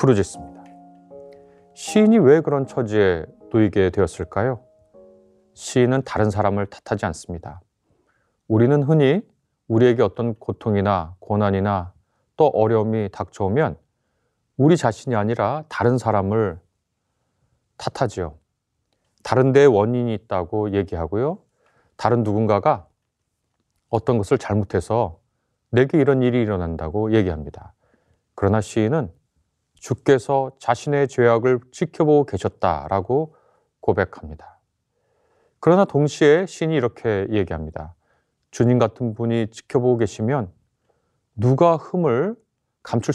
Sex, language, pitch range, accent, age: male, Korean, 100-130 Hz, native, 30-49